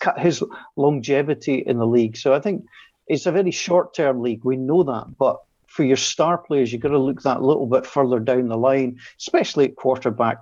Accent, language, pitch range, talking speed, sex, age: British, English, 120-145 Hz, 205 wpm, male, 50-69